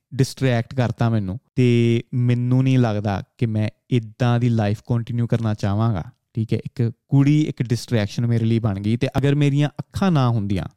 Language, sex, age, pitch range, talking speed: Punjabi, male, 30-49, 115-145 Hz, 175 wpm